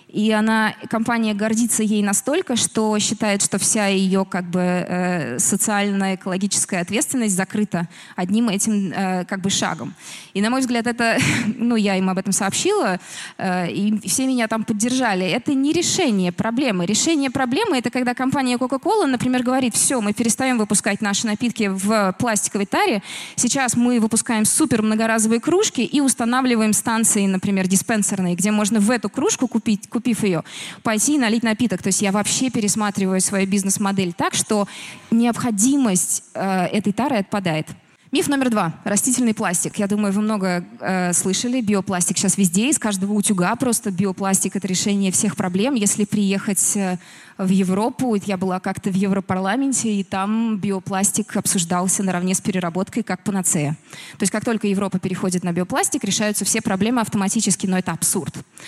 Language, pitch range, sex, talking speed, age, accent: Russian, 190-235 Hz, female, 155 wpm, 20-39, native